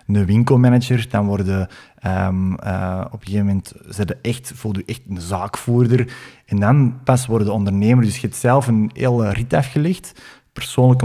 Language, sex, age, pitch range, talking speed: Dutch, male, 20-39, 100-120 Hz, 165 wpm